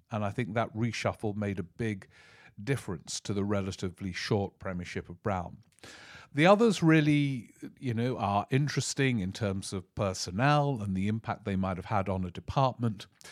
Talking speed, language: 165 wpm, English